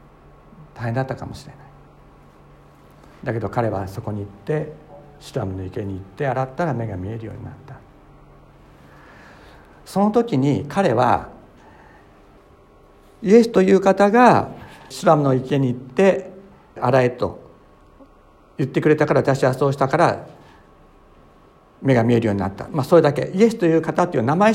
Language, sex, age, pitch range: Japanese, male, 60-79, 100-150 Hz